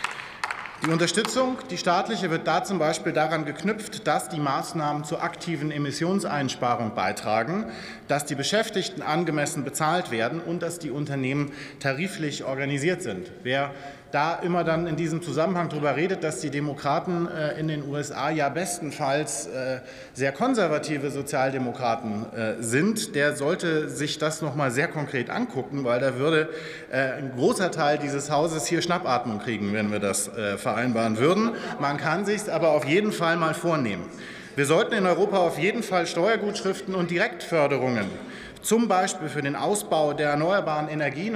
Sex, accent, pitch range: male, German, 140-180 Hz